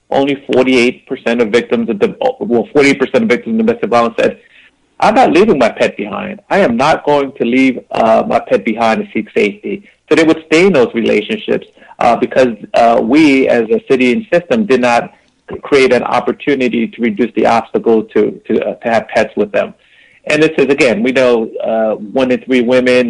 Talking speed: 195 wpm